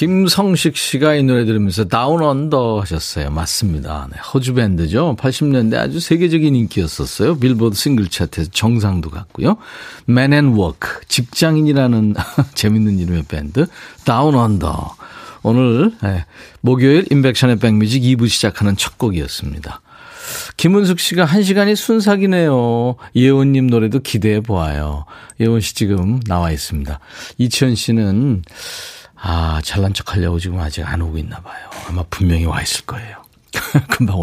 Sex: male